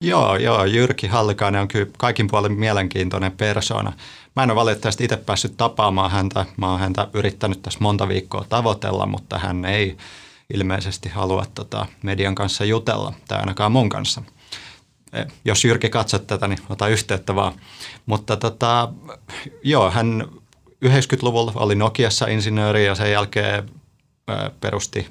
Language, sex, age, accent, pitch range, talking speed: Finnish, male, 30-49, native, 100-120 Hz, 145 wpm